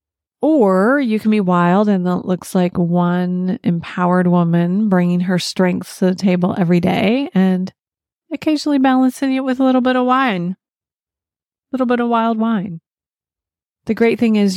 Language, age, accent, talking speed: English, 30-49, American, 165 wpm